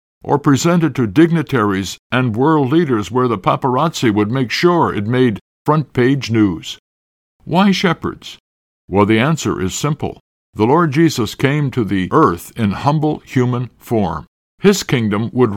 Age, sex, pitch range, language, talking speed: 60-79, male, 100-145 Hz, English, 150 wpm